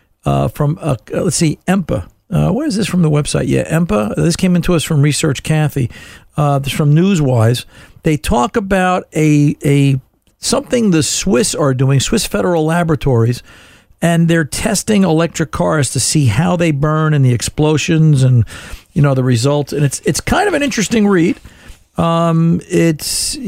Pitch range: 140-170 Hz